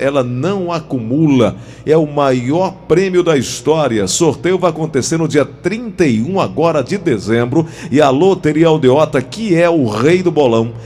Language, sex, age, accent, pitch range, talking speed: Portuguese, male, 50-69, Brazilian, 130-165 Hz, 155 wpm